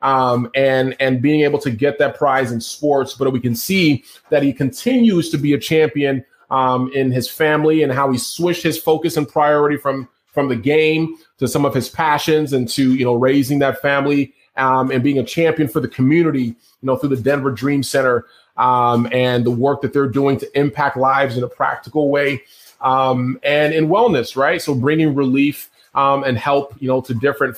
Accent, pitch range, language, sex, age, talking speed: American, 130-155 Hz, English, male, 30-49, 205 wpm